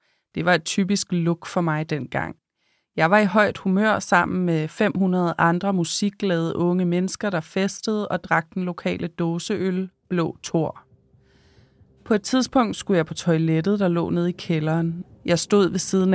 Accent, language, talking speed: native, Danish, 165 wpm